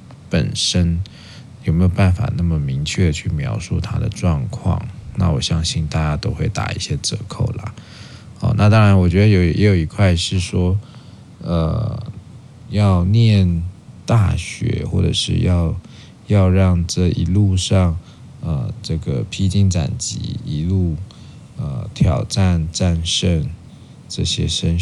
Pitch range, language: 85-115 Hz, Chinese